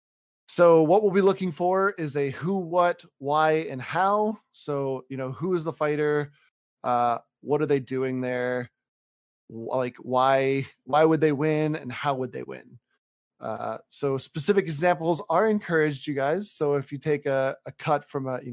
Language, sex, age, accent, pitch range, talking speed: English, male, 20-39, American, 130-170 Hz, 180 wpm